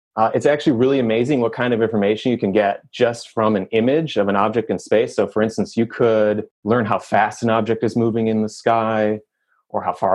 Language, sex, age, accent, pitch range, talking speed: English, male, 30-49, American, 105-125 Hz, 230 wpm